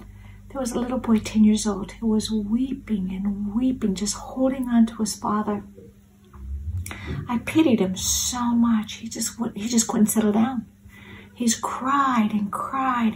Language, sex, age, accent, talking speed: English, female, 60-79, American, 155 wpm